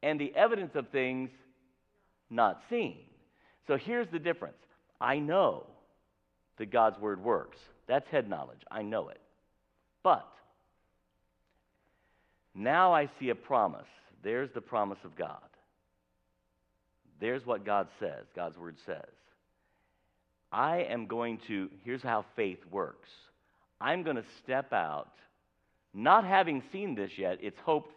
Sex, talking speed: male, 130 wpm